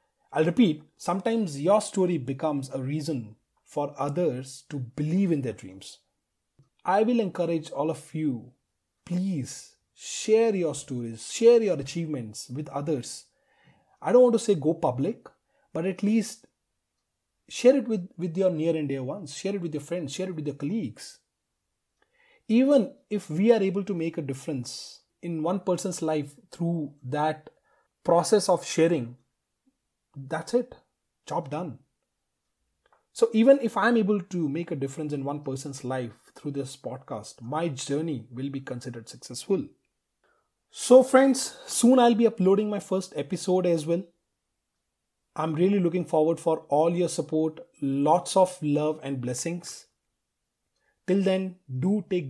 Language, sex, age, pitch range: English, male, 30-49, 145-190 Hz